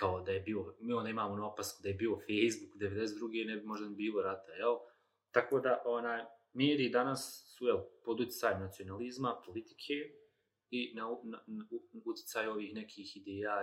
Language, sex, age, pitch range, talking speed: Croatian, male, 30-49, 100-135 Hz, 175 wpm